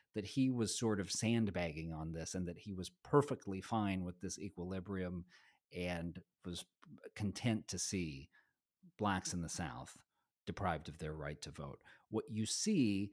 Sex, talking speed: male, 160 wpm